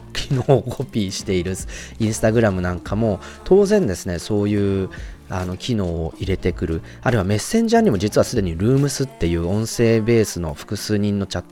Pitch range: 90-130 Hz